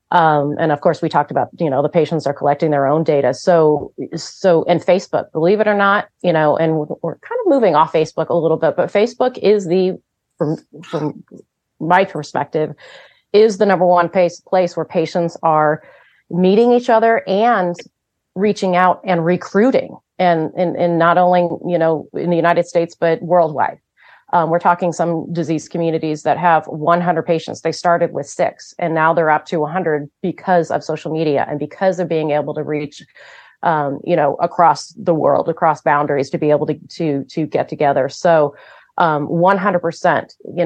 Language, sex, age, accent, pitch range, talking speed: English, female, 30-49, American, 155-180 Hz, 185 wpm